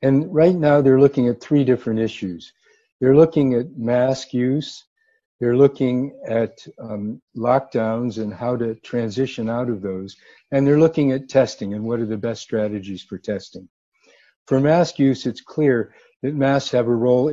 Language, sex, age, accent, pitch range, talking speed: English, male, 60-79, American, 110-135 Hz, 170 wpm